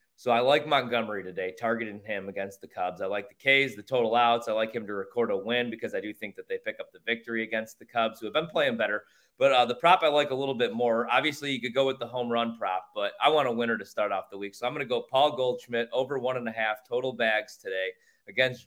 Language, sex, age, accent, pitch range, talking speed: English, male, 30-49, American, 110-130 Hz, 280 wpm